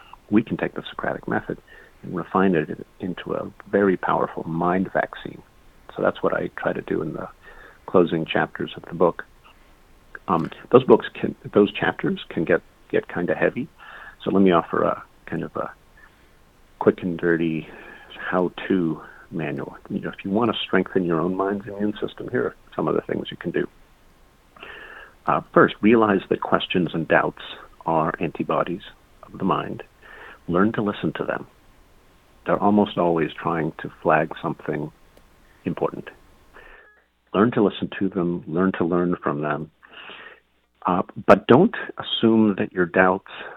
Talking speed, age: 165 wpm, 50-69